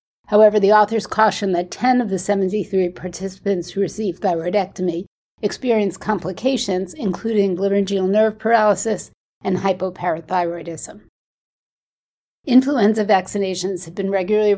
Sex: female